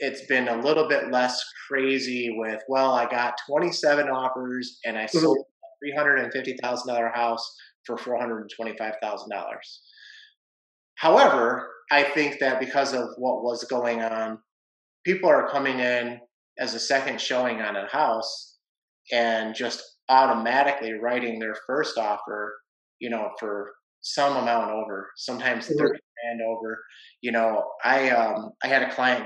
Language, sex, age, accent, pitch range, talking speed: English, male, 30-49, American, 115-140 Hz, 160 wpm